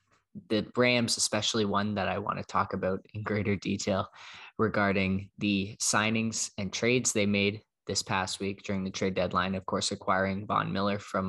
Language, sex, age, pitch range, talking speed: English, male, 20-39, 95-110 Hz, 175 wpm